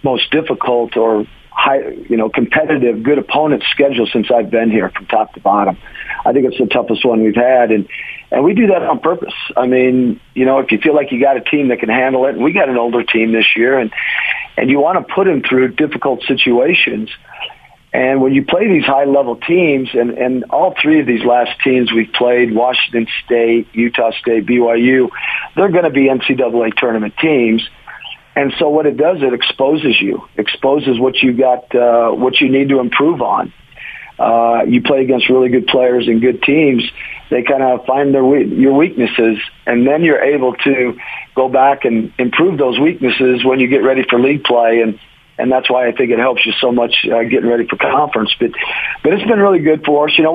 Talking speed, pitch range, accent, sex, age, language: 210 wpm, 120-135 Hz, American, male, 50-69, English